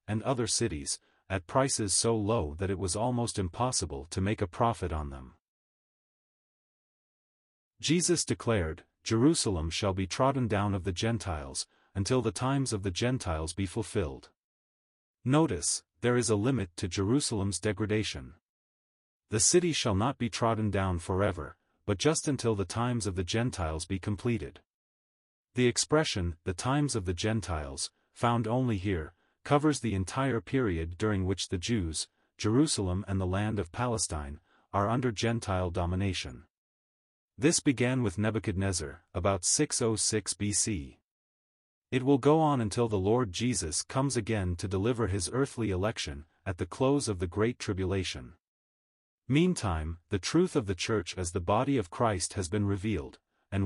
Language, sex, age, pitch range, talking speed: English, male, 30-49, 95-120 Hz, 150 wpm